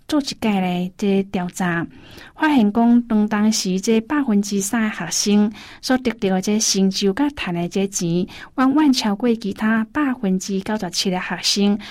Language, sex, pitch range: Chinese, female, 185-225 Hz